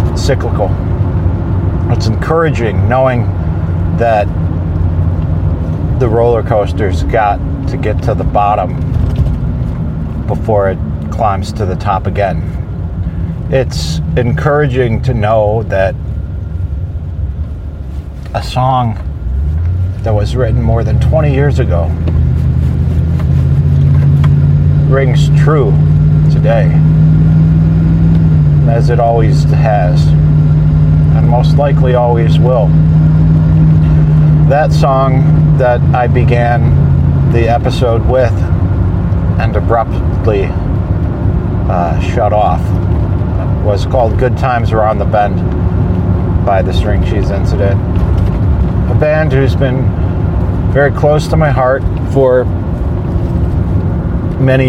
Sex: male